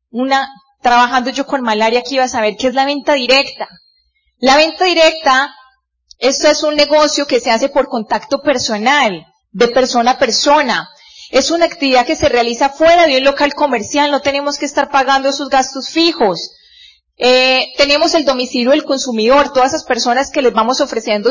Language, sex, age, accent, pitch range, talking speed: Spanish, female, 30-49, Colombian, 245-295 Hz, 175 wpm